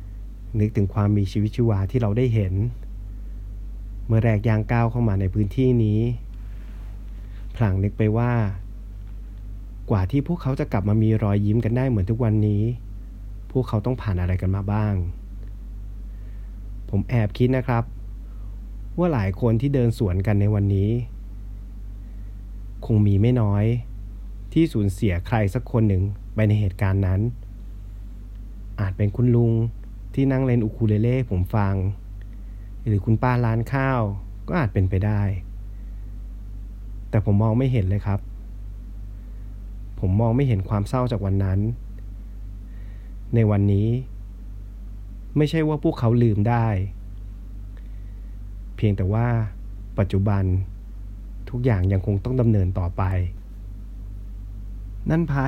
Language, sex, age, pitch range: Thai, male, 30-49, 100-115 Hz